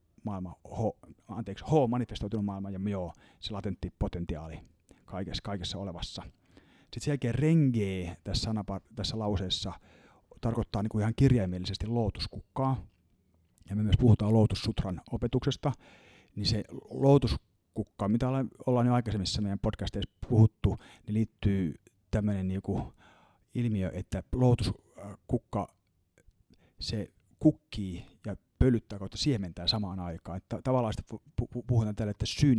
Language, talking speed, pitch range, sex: Finnish, 115 wpm, 95-115 Hz, male